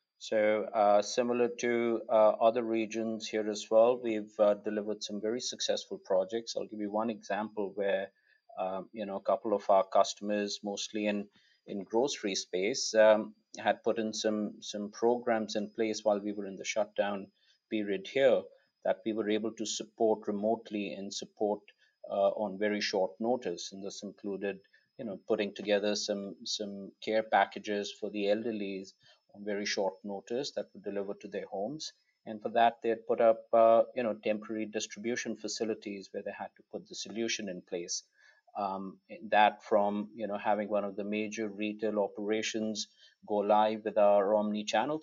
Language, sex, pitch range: English, male, 100-110 Hz